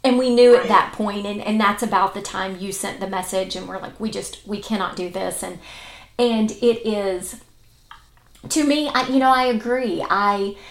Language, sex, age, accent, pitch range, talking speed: English, female, 30-49, American, 185-220 Hz, 205 wpm